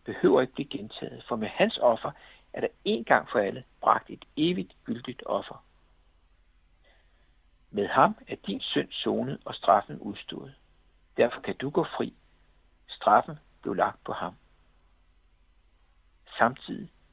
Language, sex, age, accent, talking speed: Danish, male, 60-79, native, 135 wpm